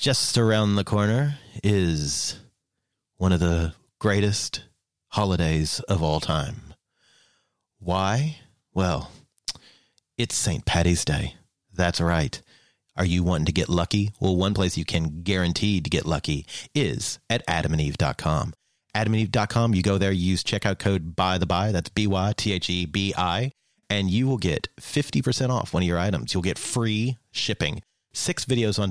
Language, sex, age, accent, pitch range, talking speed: English, male, 30-49, American, 90-110 Hz, 160 wpm